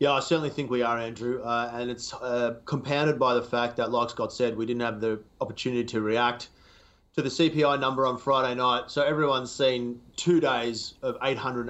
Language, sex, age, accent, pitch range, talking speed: English, male, 30-49, Australian, 115-135 Hz, 200 wpm